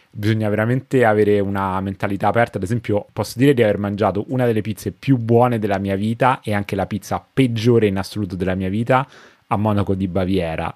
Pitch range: 95-115 Hz